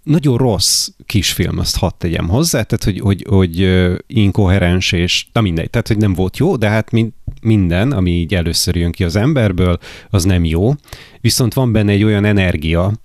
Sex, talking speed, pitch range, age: male, 180 wpm, 90-115 Hz, 30-49